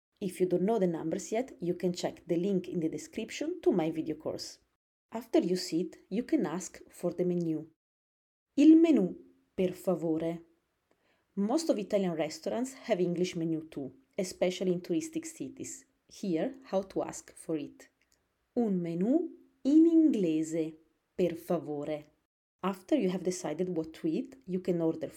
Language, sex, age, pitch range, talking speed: English, female, 30-49, 165-240 Hz, 160 wpm